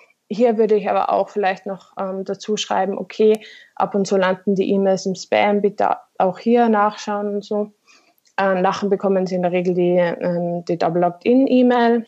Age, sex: 20-39, female